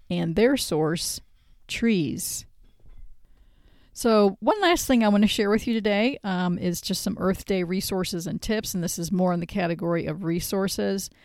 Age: 40-59